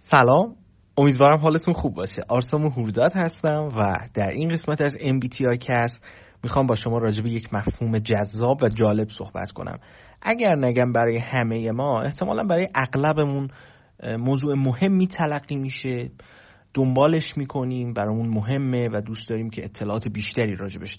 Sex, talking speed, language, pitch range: male, 145 wpm, Persian, 110-155 Hz